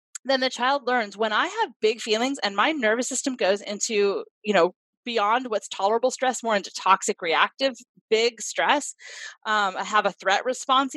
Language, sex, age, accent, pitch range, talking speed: English, female, 20-39, American, 200-255 Hz, 180 wpm